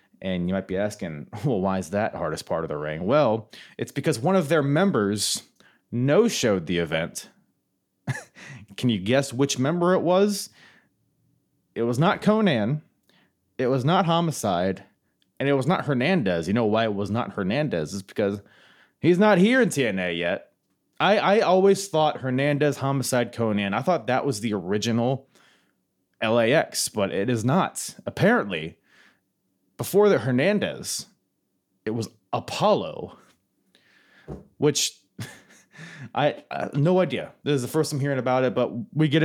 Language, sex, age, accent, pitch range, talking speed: English, male, 30-49, American, 100-155 Hz, 155 wpm